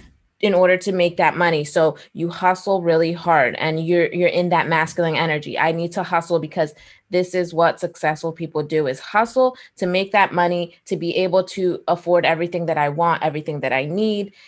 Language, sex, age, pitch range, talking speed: English, female, 20-39, 165-190 Hz, 200 wpm